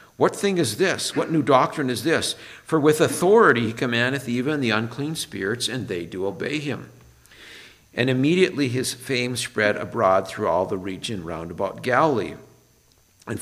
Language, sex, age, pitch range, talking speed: English, male, 50-69, 100-130 Hz, 165 wpm